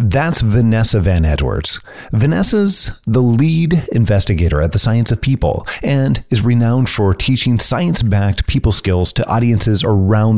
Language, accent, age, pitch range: English, American, 30-49, 95-135 Hz